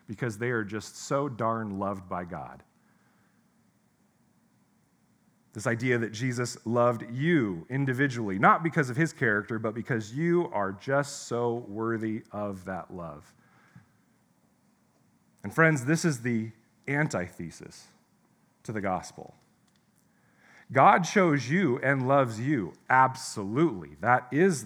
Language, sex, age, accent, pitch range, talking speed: English, male, 40-59, American, 105-150 Hz, 120 wpm